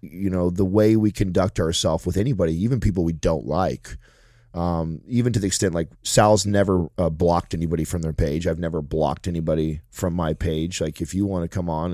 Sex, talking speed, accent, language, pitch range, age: male, 210 wpm, American, English, 85-105 Hz, 30-49